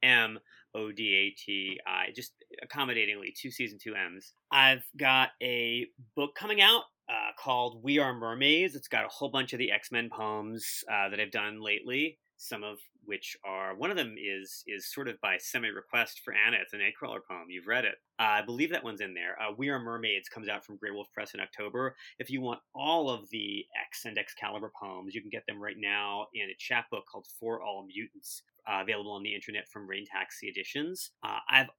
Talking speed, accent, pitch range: 205 wpm, American, 105-135 Hz